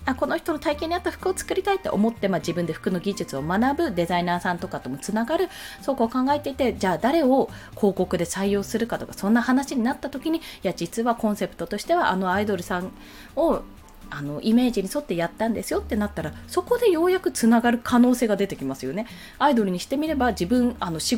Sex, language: female, Japanese